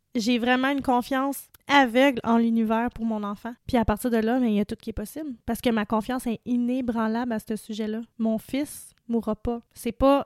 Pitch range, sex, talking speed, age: 215-245 Hz, female, 230 wpm, 20-39